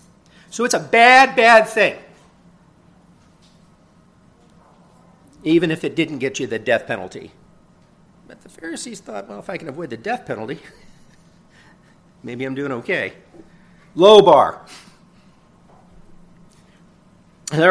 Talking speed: 115 wpm